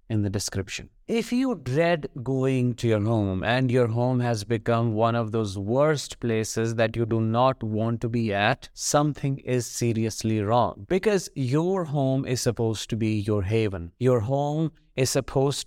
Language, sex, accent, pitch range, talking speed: English, male, Indian, 115-155 Hz, 170 wpm